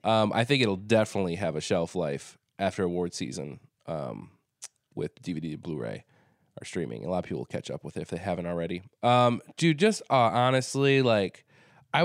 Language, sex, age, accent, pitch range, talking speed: English, male, 20-39, American, 95-115 Hz, 190 wpm